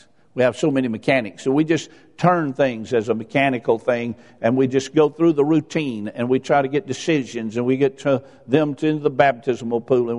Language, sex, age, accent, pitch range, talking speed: English, male, 50-69, American, 115-150 Hz, 210 wpm